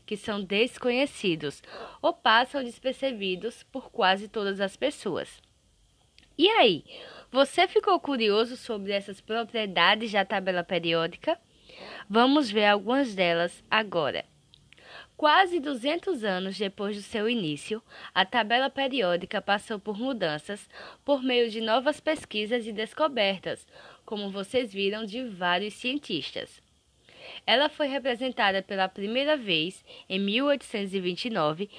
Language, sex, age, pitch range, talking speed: Portuguese, female, 10-29, 195-265 Hz, 115 wpm